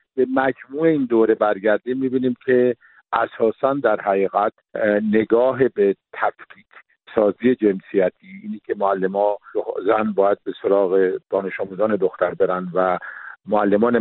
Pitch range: 100-125 Hz